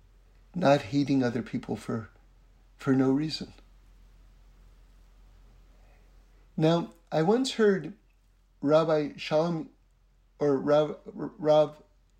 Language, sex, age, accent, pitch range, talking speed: English, male, 60-79, American, 135-190 Hz, 80 wpm